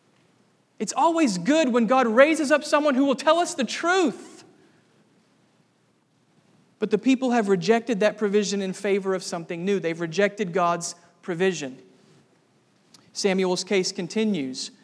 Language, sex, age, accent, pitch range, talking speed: English, male, 40-59, American, 180-210 Hz, 135 wpm